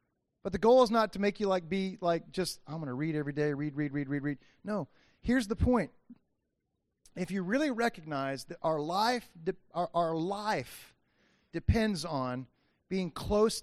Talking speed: 185 wpm